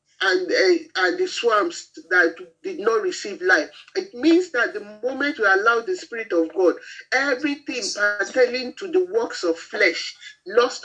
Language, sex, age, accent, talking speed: English, male, 50-69, Nigerian, 160 wpm